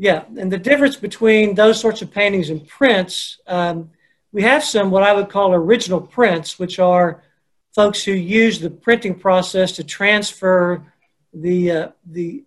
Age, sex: 50-69, male